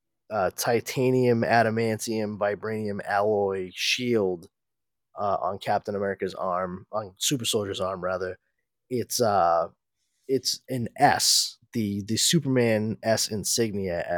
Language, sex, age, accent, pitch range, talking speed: English, male, 20-39, American, 105-135 Hz, 110 wpm